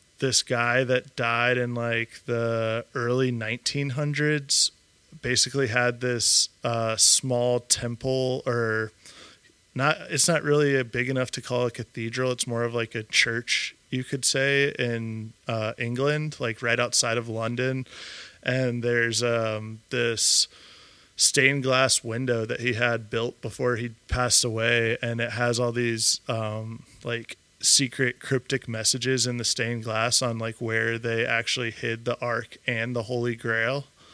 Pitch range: 115-130 Hz